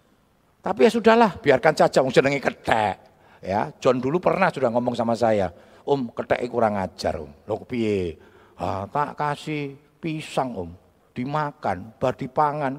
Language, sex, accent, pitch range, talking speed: Indonesian, male, native, 105-170 Hz, 165 wpm